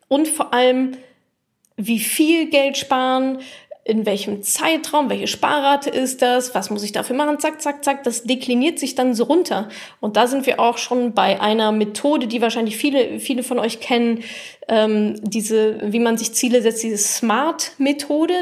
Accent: German